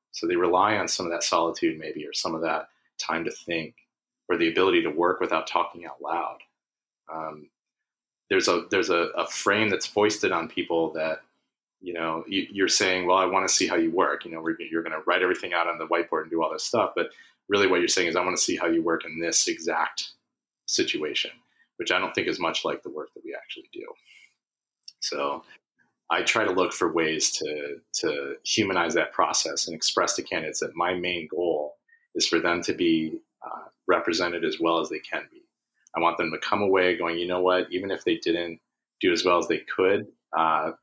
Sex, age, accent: male, 30-49, American